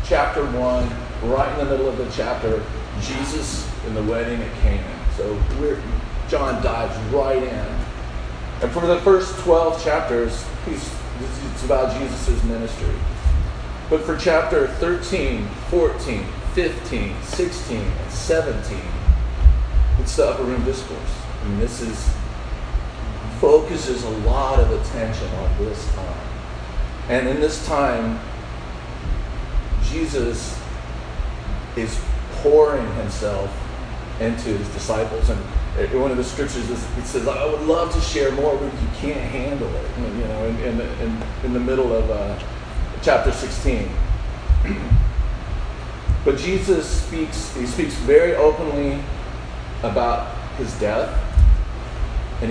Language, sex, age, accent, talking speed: English, male, 40-59, American, 130 wpm